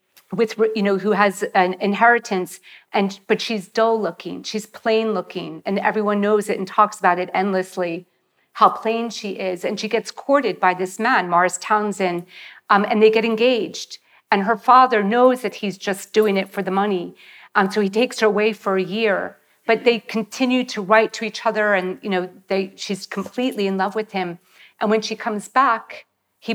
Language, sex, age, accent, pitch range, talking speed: English, female, 40-59, American, 190-225 Hz, 195 wpm